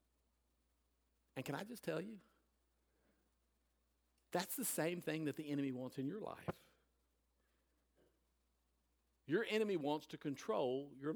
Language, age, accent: English, 50-69, American